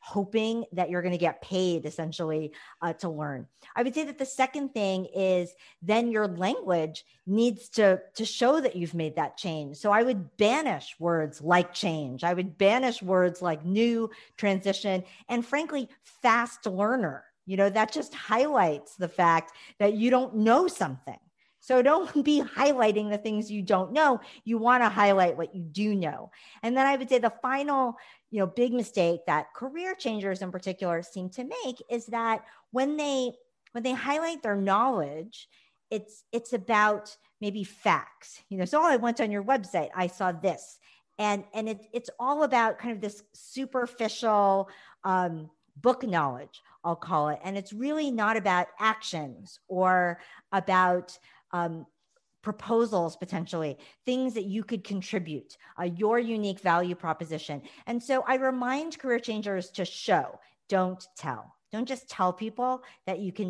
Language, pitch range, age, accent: English, 180-240 Hz, 50-69, American